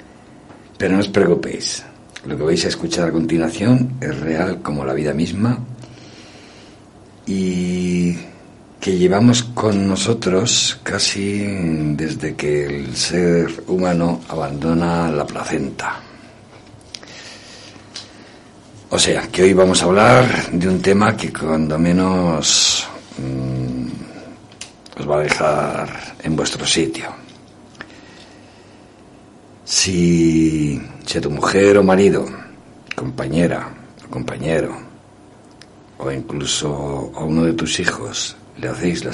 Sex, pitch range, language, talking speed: male, 80-100 Hz, Spanish, 110 wpm